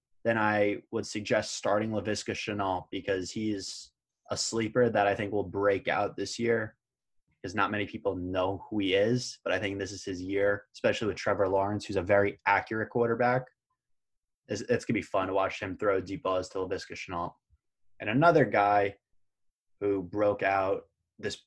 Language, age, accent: English, 20-39, American